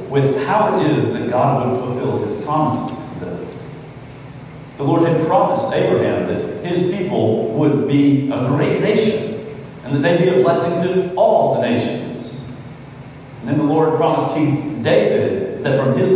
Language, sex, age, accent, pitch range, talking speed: English, male, 40-59, American, 135-160 Hz, 170 wpm